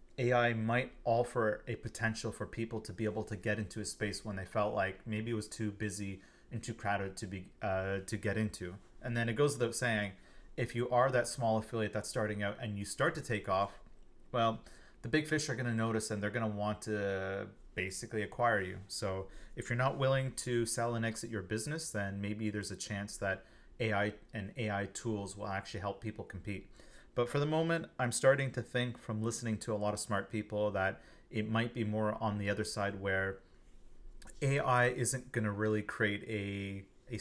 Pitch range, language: 100-120 Hz, English